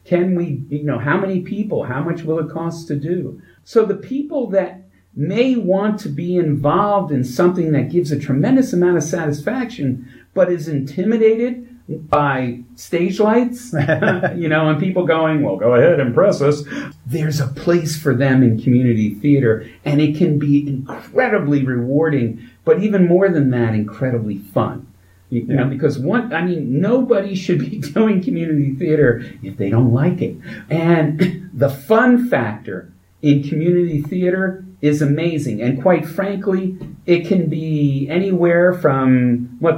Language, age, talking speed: English, 50-69, 155 wpm